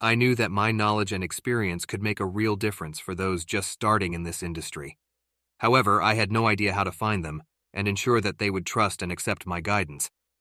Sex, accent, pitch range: male, American, 85-110 Hz